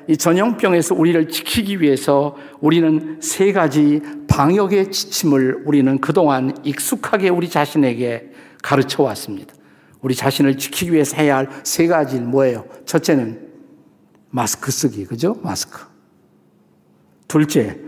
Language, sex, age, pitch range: Korean, male, 50-69, 130-175 Hz